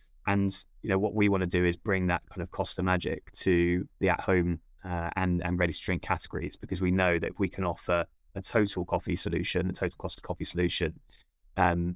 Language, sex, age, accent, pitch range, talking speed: English, male, 20-39, British, 85-95 Hz, 225 wpm